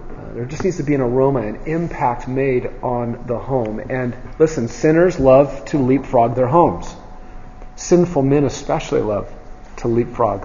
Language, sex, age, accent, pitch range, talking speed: English, male, 40-59, American, 125-155 Hz, 155 wpm